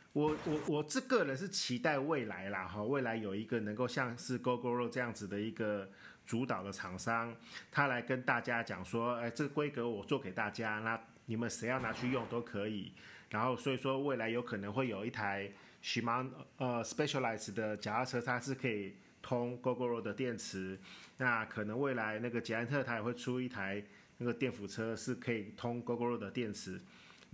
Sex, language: male, Chinese